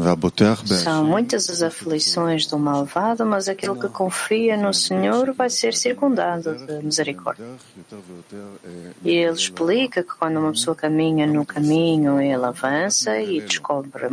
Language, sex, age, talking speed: English, female, 30-49, 130 wpm